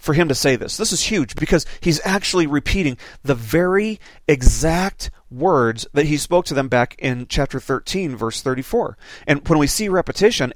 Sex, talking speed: male, 180 wpm